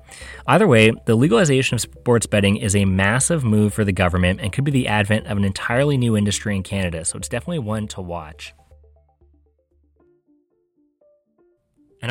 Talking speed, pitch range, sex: 165 wpm, 100-130 Hz, male